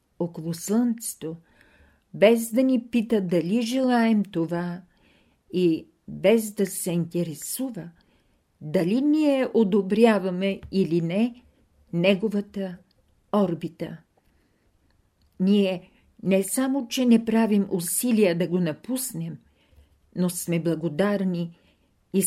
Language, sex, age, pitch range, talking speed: Bulgarian, female, 50-69, 170-215 Hz, 95 wpm